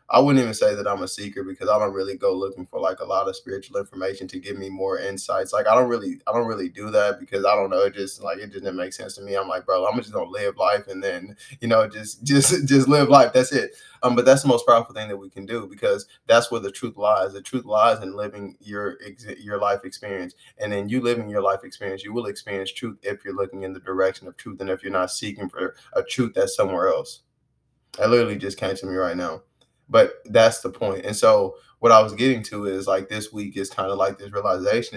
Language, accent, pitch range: English, American, 95-130 Hz